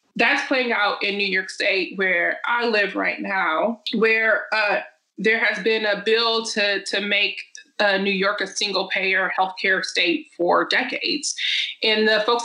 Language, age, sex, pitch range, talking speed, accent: English, 20-39, female, 195-235 Hz, 170 wpm, American